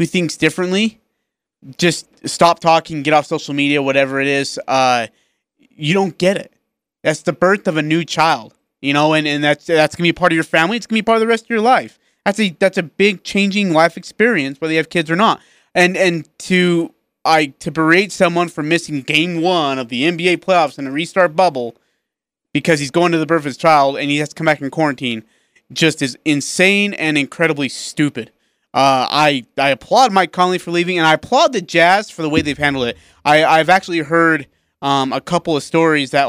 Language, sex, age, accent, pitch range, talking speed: English, male, 30-49, American, 140-175 Hz, 215 wpm